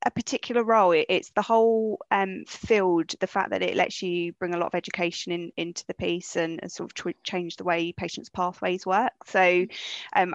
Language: English